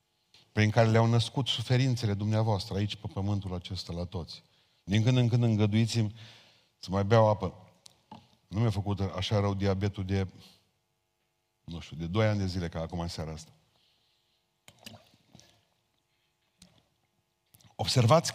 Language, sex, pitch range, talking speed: Romanian, male, 105-135 Hz, 135 wpm